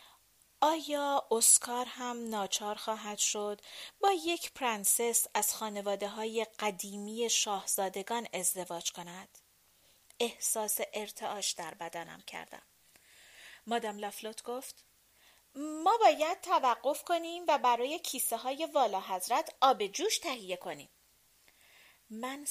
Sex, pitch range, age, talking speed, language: female, 200-260 Hz, 30-49, 100 wpm, Persian